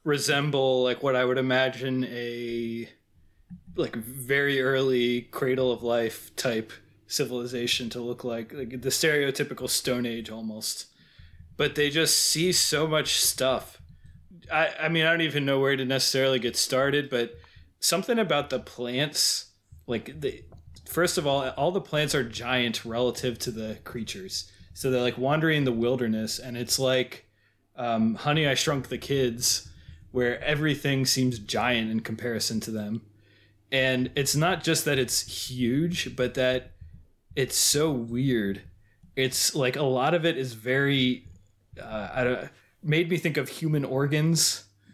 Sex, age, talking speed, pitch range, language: male, 20-39, 150 wpm, 115-140 Hz, English